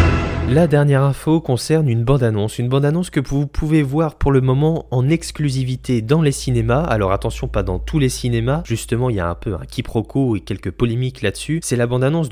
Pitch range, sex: 100-130 Hz, male